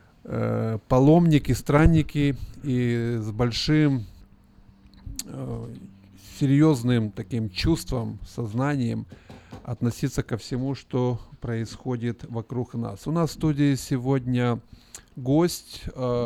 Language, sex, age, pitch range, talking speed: Russian, male, 20-39, 115-140 Hz, 80 wpm